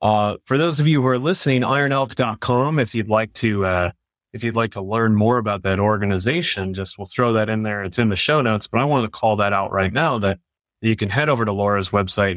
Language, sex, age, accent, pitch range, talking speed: English, male, 30-49, American, 100-135 Hz, 245 wpm